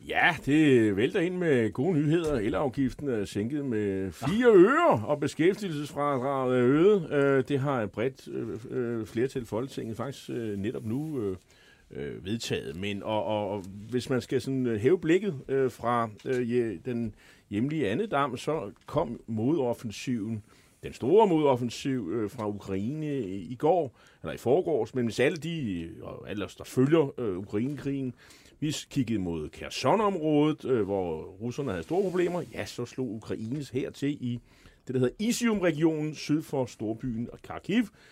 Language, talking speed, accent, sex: Danish, 150 wpm, native, male